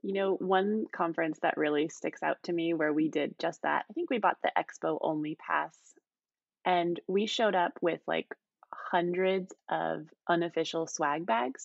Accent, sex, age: American, female, 20-39